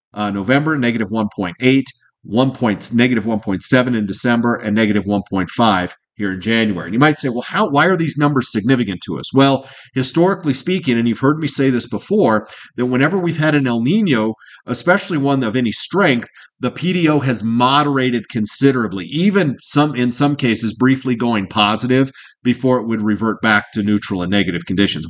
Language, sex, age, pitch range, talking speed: English, male, 40-59, 110-140 Hz, 170 wpm